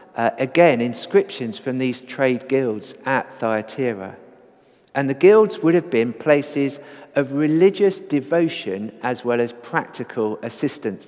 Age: 50-69